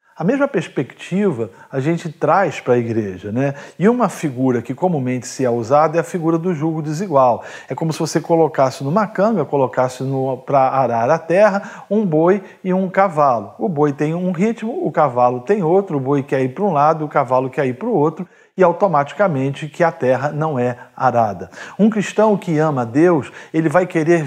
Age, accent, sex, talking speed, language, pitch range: 40-59, Brazilian, male, 200 wpm, Portuguese, 140-180 Hz